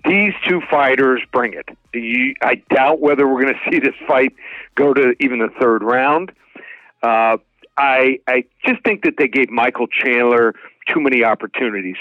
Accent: American